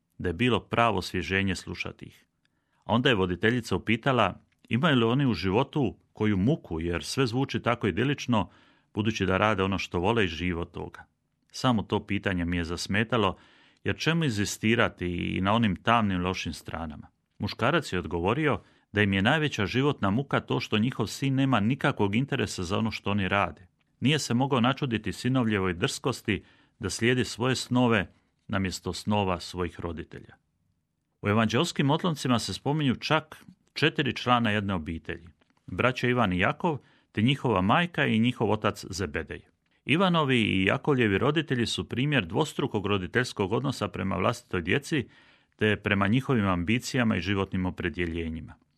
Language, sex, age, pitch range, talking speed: Croatian, male, 30-49, 95-130 Hz, 150 wpm